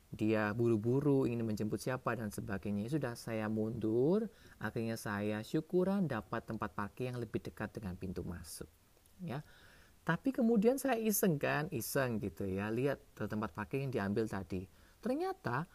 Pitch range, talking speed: 105-160 Hz, 145 wpm